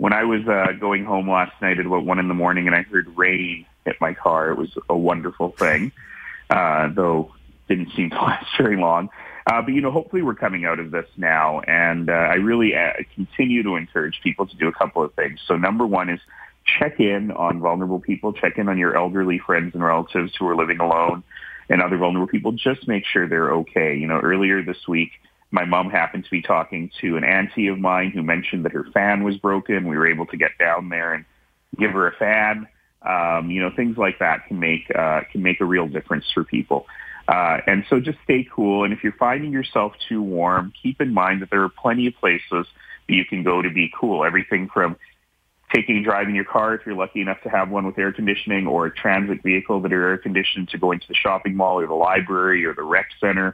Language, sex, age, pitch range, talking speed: English, male, 30-49, 85-100 Hz, 235 wpm